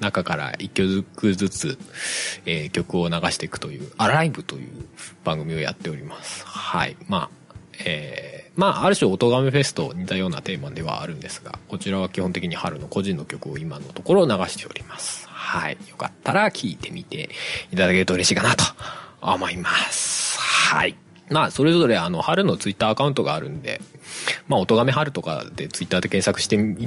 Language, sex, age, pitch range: Japanese, male, 20-39, 95-160 Hz